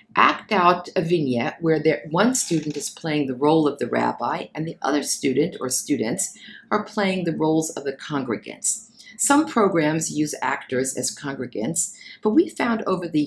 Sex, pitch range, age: female, 150-220 Hz, 50-69